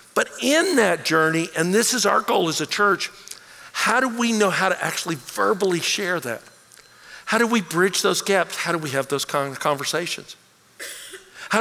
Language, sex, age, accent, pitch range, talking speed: English, male, 60-79, American, 165-210 Hz, 180 wpm